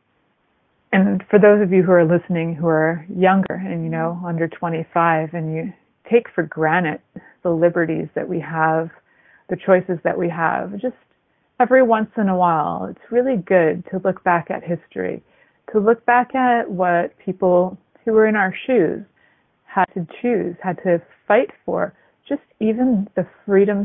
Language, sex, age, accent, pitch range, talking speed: English, female, 30-49, American, 170-200 Hz, 170 wpm